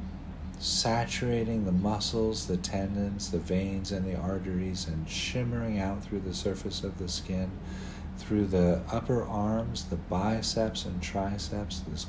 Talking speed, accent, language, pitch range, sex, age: 140 wpm, American, English, 90-110 Hz, male, 50-69